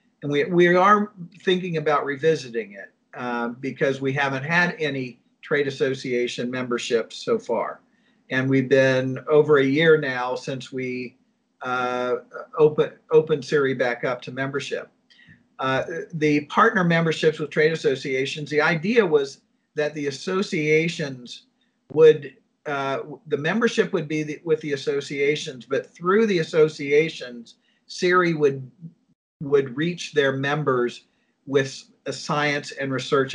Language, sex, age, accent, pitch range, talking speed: English, male, 50-69, American, 135-175 Hz, 135 wpm